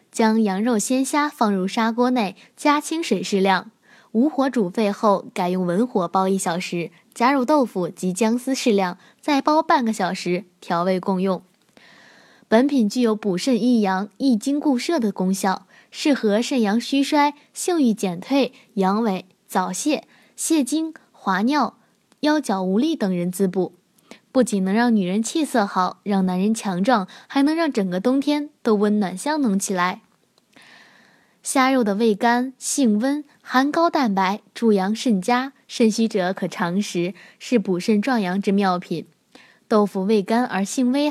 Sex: female